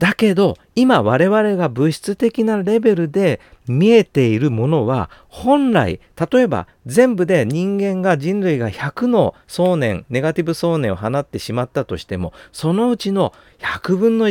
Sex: male